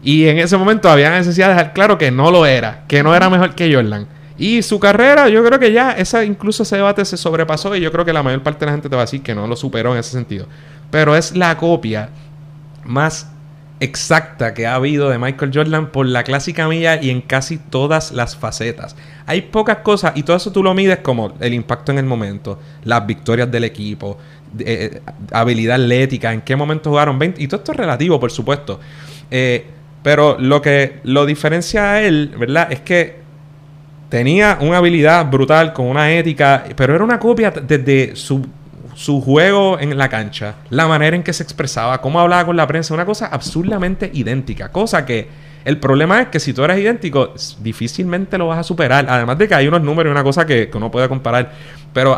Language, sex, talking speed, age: Spanish, male, 210 wpm, 30-49